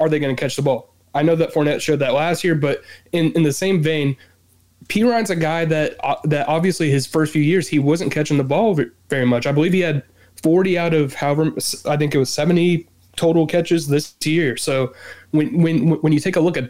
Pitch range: 125-155 Hz